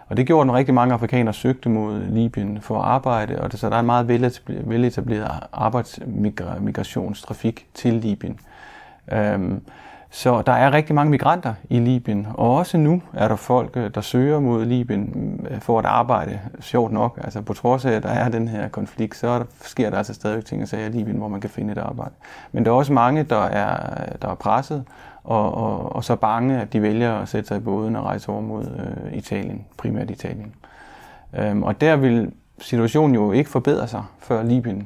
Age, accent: 30-49, native